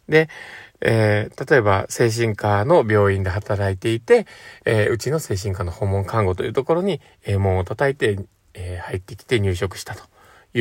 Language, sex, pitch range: Japanese, male, 100-150 Hz